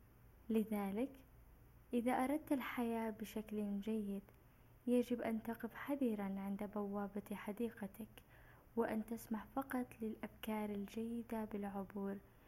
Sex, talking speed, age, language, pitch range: female, 90 wpm, 10-29, Arabic, 200-230 Hz